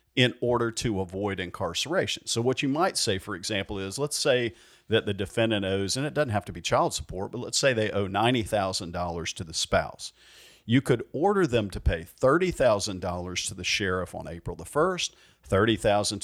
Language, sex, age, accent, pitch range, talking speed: English, male, 50-69, American, 95-120 Hz, 190 wpm